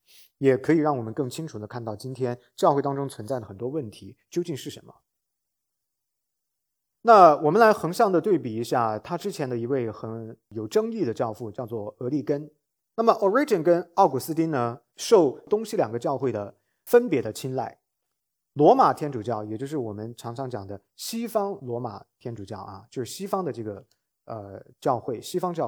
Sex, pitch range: male, 115-180 Hz